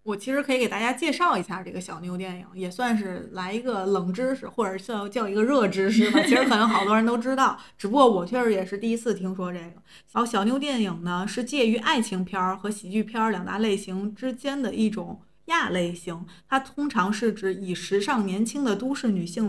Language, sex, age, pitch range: Chinese, female, 20-39, 190-235 Hz